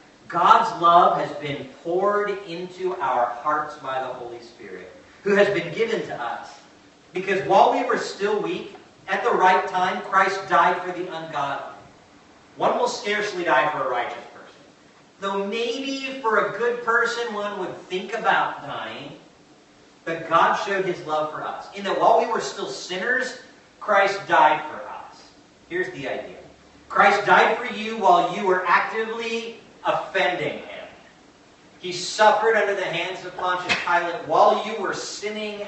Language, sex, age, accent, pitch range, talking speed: English, male, 40-59, American, 150-205 Hz, 160 wpm